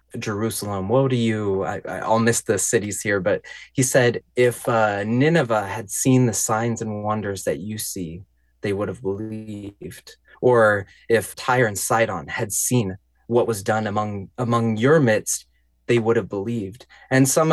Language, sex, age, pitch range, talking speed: English, male, 20-39, 105-130 Hz, 170 wpm